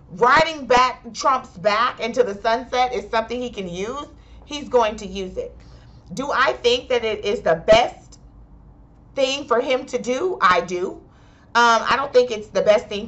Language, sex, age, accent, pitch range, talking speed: English, female, 40-59, American, 175-240 Hz, 185 wpm